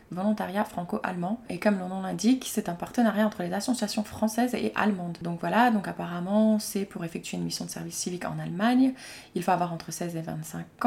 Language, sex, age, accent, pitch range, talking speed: French, female, 20-39, French, 175-220 Hz, 205 wpm